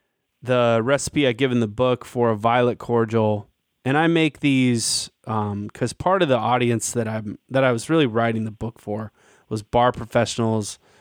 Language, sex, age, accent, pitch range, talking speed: English, male, 20-39, American, 115-145 Hz, 185 wpm